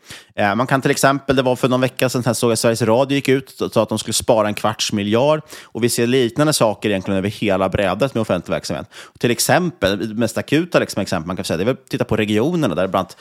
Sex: male